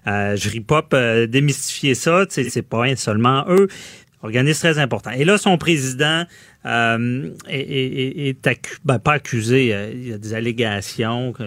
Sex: male